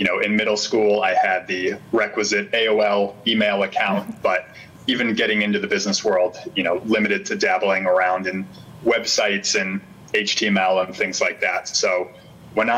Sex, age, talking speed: male, 30-49, 165 wpm